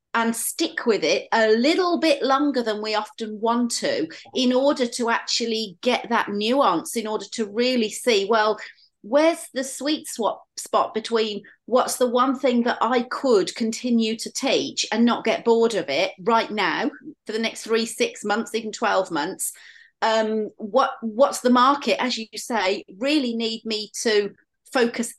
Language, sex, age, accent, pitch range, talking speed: English, female, 40-59, British, 220-270 Hz, 170 wpm